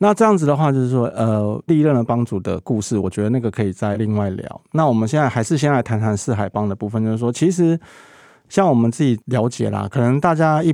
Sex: male